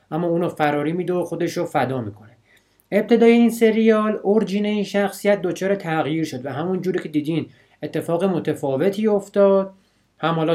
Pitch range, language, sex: 130-180 Hz, Persian, male